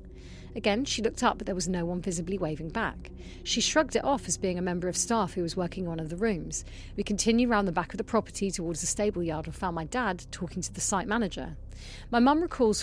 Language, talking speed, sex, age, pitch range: English, 255 wpm, female, 40-59, 150-210 Hz